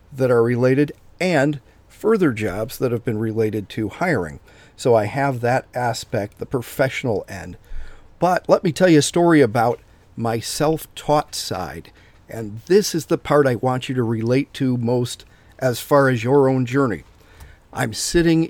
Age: 50-69